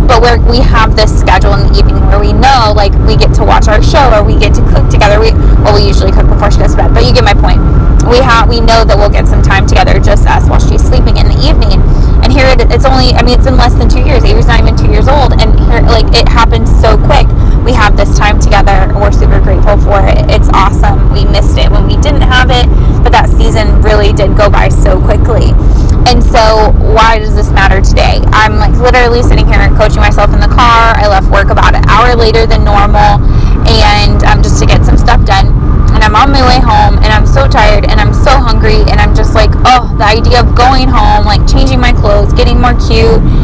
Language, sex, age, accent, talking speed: English, female, 20-39, American, 250 wpm